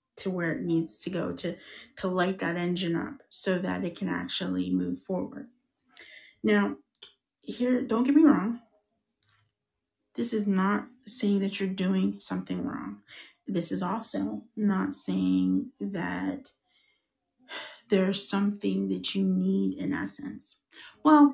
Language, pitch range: English, 165-220 Hz